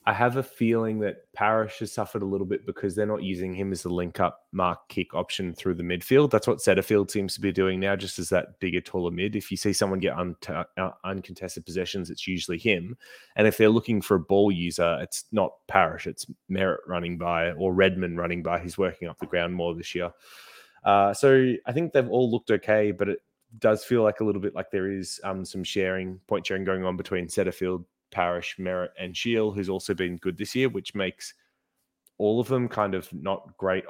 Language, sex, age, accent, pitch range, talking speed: English, male, 20-39, Australian, 90-105 Hz, 220 wpm